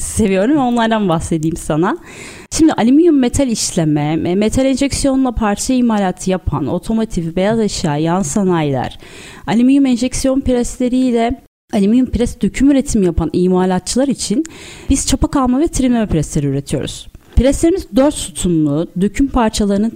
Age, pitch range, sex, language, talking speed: 30-49, 185-260 Hz, female, Turkish, 120 wpm